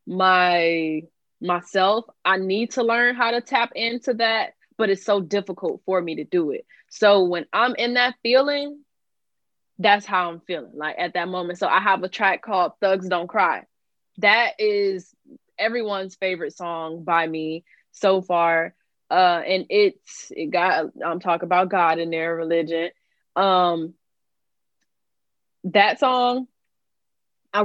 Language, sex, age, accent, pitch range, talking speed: English, female, 20-39, American, 180-220 Hz, 150 wpm